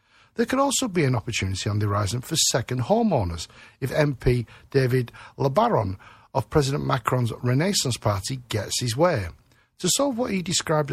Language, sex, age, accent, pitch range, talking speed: English, male, 50-69, British, 115-155 Hz, 160 wpm